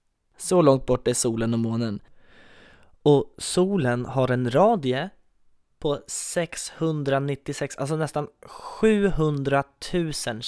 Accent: native